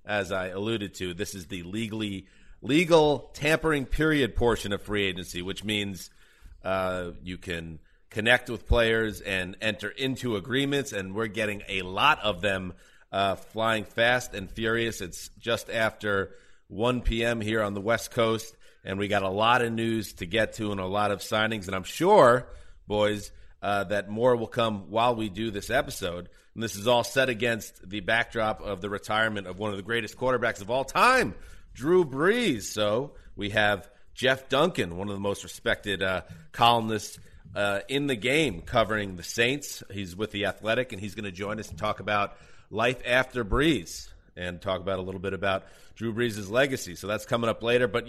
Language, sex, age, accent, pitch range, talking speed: English, male, 30-49, American, 95-120 Hz, 190 wpm